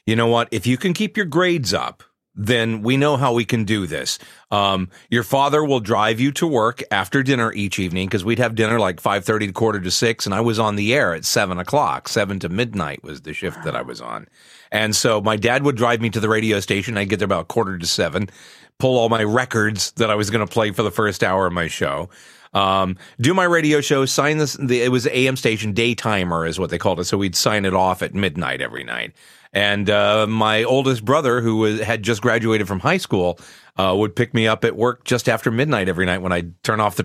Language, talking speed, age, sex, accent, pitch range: English, 245 wpm, 40-59, male, American, 100-125 Hz